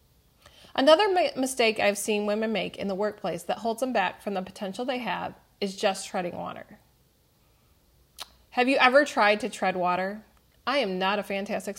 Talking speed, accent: 175 wpm, American